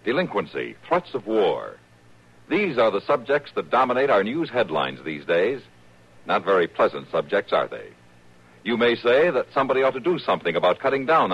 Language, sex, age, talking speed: English, male, 60-79, 175 wpm